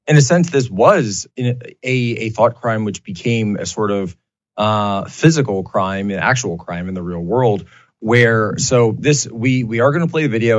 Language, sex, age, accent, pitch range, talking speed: English, male, 30-49, American, 100-120 Hz, 200 wpm